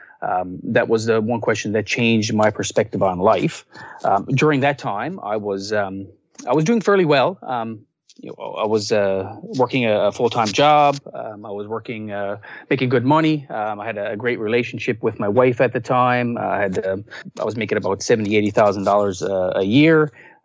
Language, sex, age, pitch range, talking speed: English, male, 30-49, 110-130 Hz, 185 wpm